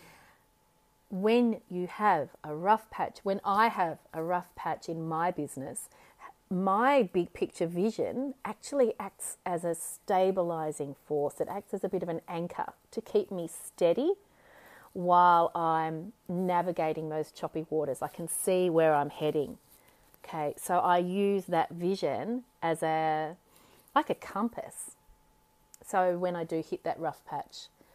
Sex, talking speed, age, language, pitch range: female, 145 wpm, 30-49, English, 160-190 Hz